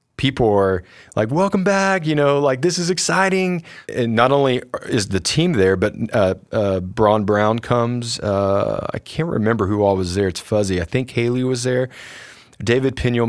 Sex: male